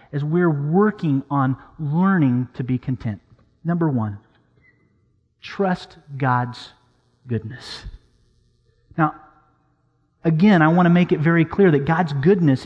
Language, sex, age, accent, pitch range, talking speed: English, male, 40-59, American, 125-185 Hz, 120 wpm